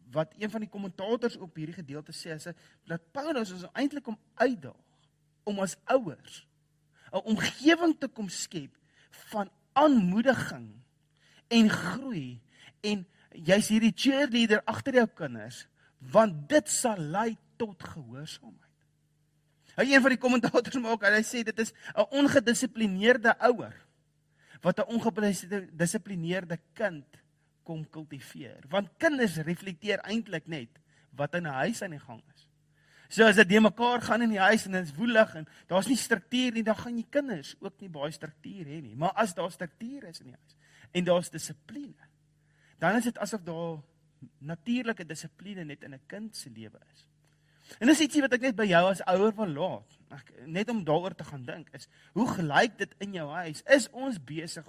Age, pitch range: 40-59, 150-225 Hz